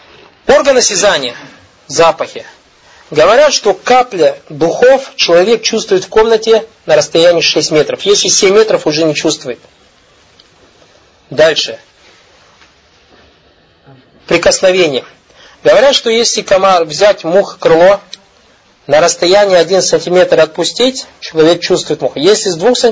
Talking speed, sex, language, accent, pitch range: 105 wpm, male, Russian, native, 170-230 Hz